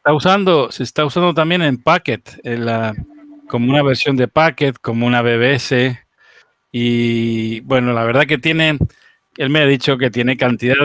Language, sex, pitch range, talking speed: Spanish, male, 115-140 Hz, 170 wpm